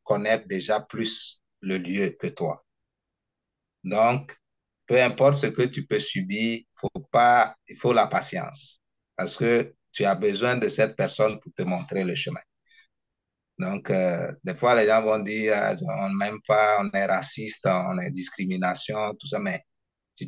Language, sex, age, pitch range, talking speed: French, male, 30-49, 100-135 Hz, 165 wpm